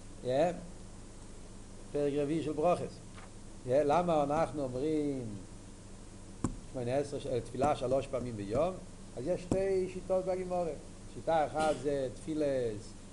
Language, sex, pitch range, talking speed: Hebrew, male, 100-135 Hz, 90 wpm